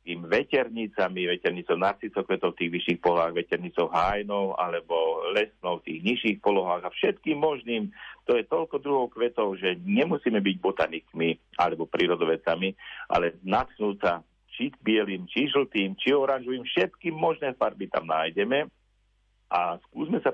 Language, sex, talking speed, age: Slovak, male, 140 wpm, 50-69